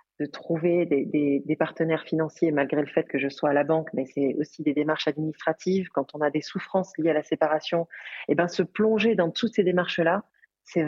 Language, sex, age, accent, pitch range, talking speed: French, female, 30-49, French, 155-195 Hz, 220 wpm